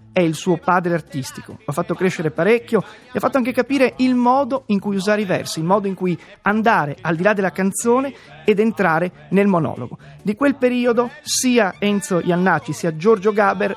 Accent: native